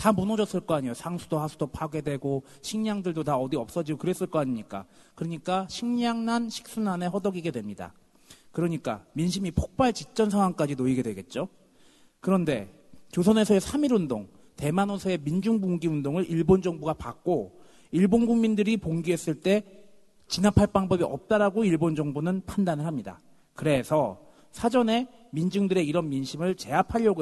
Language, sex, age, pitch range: Korean, male, 40-59, 145-205 Hz